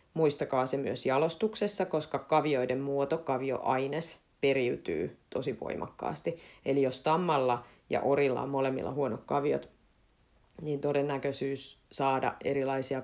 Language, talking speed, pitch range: Finnish, 110 wpm, 140-165 Hz